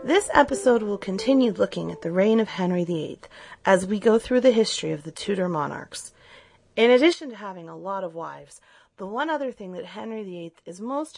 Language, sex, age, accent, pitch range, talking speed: English, female, 30-49, American, 170-250 Hz, 205 wpm